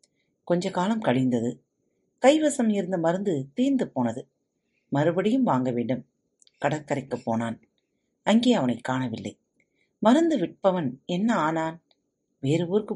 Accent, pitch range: native, 135-220 Hz